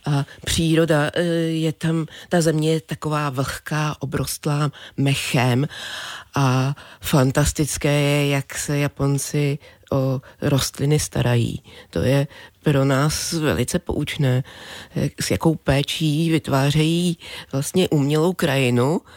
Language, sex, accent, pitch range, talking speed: Czech, female, native, 140-165 Hz, 105 wpm